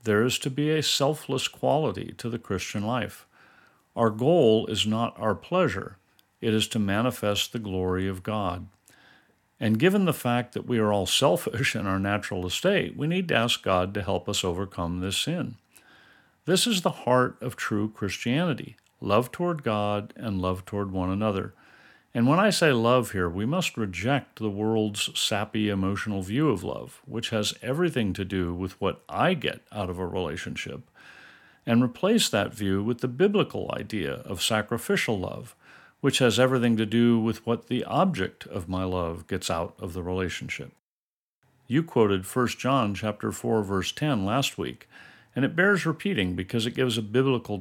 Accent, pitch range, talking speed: American, 95-125 Hz, 175 wpm